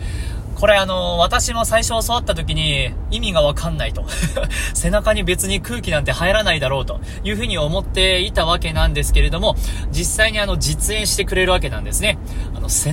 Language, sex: Japanese, male